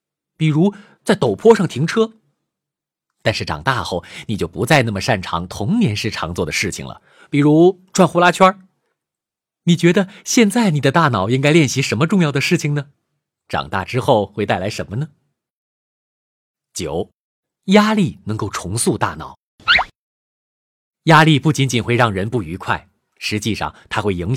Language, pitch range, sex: Chinese, 110-170 Hz, male